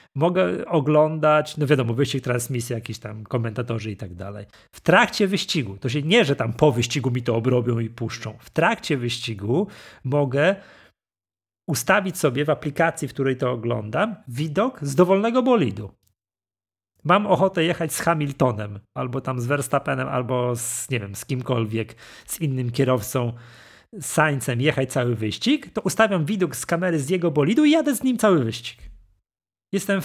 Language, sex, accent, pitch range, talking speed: Polish, male, native, 120-175 Hz, 160 wpm